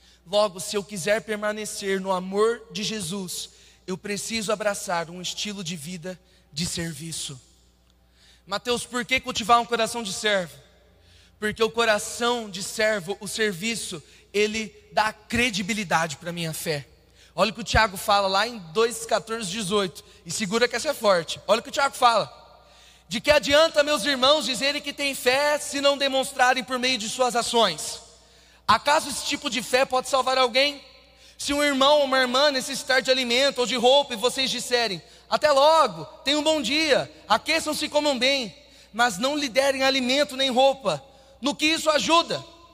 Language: Portuguese